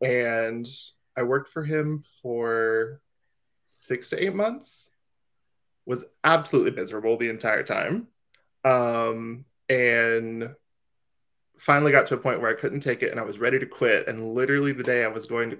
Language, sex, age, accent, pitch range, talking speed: English, male, 20-39, American, 115-140 Hz, 160 wpm